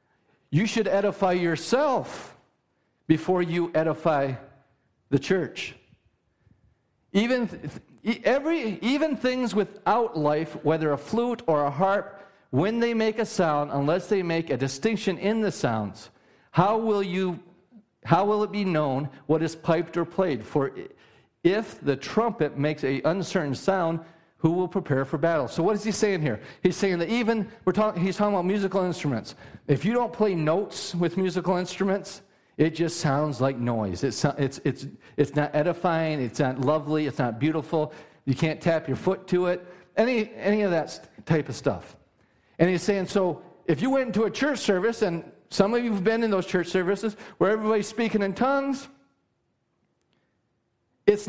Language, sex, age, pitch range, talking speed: English, male, 50-69, 150-210 Hz, 170 wpm